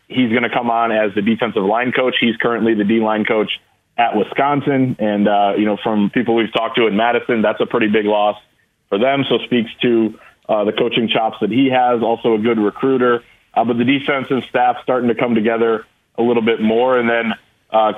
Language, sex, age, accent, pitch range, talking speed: English, male, 30-49, American, 110-130 Hz, 225 wpm